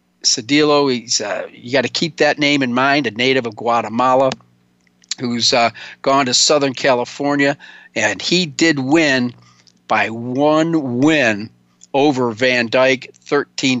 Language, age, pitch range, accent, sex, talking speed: English, 50-69, 125-155 Hz, American, male, 140 wpm